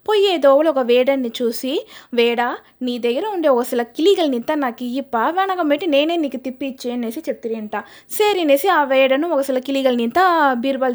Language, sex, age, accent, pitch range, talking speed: Telugu, female, 20-39, native, 235-300 Hz, 155 wpm